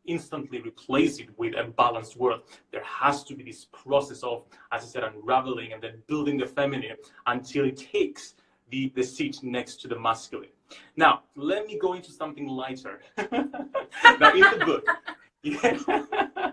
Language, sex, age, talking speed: English, male, 30-49, 165 wpm